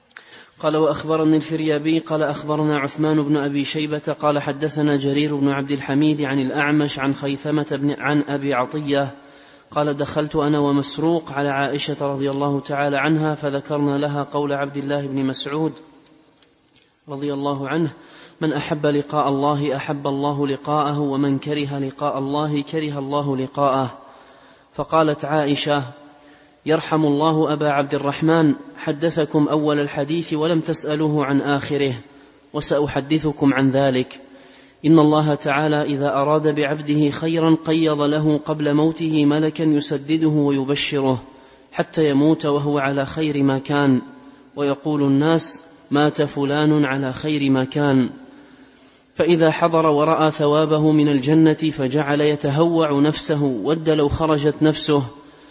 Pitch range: 140-155 Hz